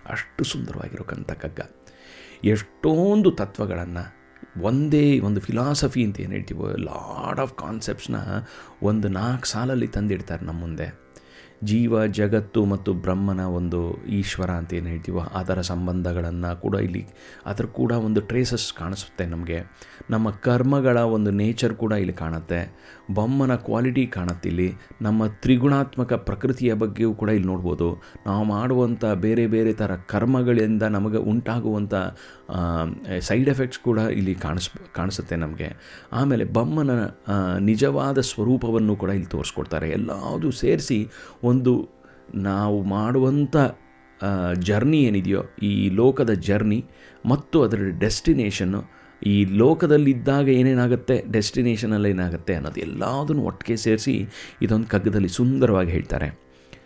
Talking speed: 110 wpm